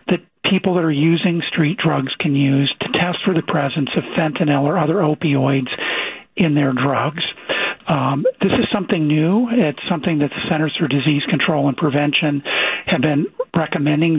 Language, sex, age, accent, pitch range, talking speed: English, male, 50-69, American, 145-170 Hz, 165 wpm